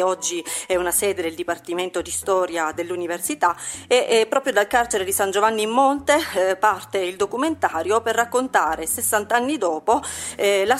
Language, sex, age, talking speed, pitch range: Italian, female, 40-59, 150 wpm, 180-225 Hz